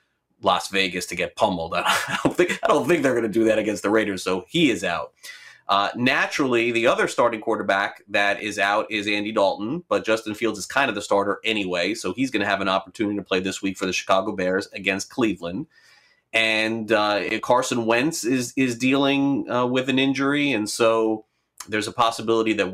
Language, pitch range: English, 105-135 Hz